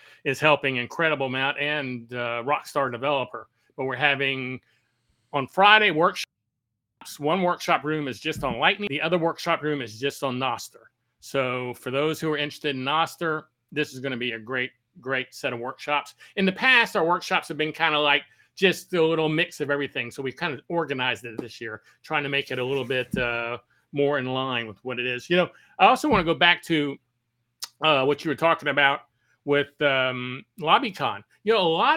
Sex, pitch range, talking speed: male, 130-175 Hz, 205 wpm